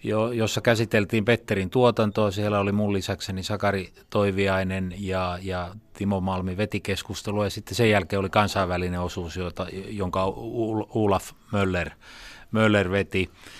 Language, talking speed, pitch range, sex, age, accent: Finnish, 125 wpm, 90-105 Hz, male, 30-49, native